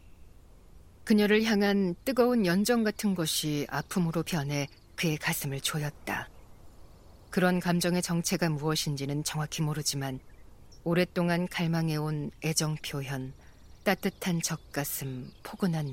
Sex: female